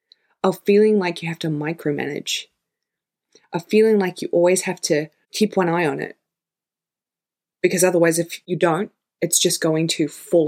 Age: 20-39